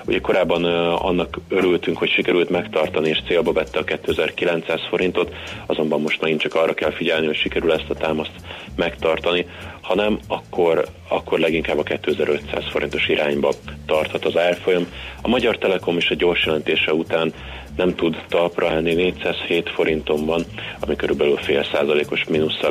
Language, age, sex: Hungarian, 30-49, male